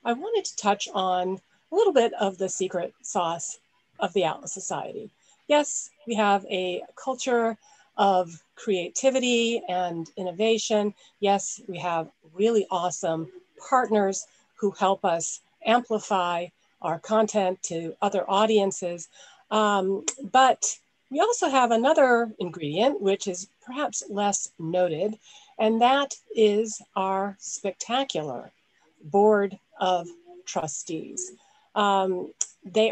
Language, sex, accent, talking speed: English, female, American, 115 wpm